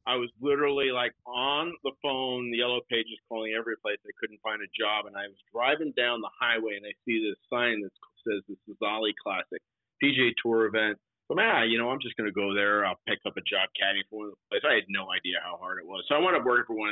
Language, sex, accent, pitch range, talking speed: English, male, American, 105-125 Hz, 265 wpm